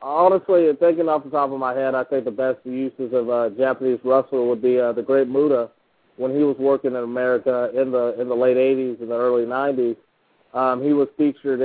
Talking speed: 220 wpm